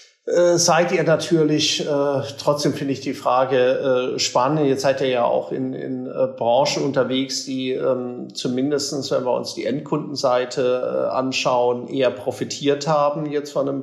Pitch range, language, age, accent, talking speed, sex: 130-155 Hz, German, 40-59, German, 160 wpm, male